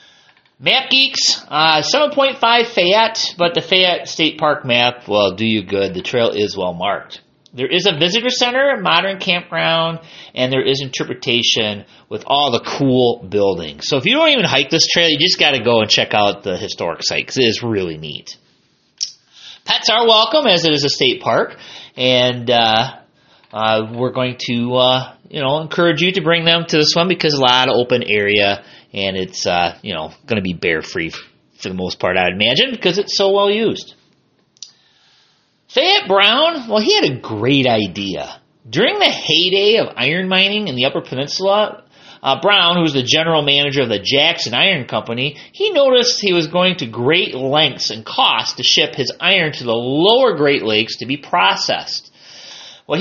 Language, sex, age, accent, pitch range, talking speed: English, male, 30-49, American, 120-195 Hz, 185 wpm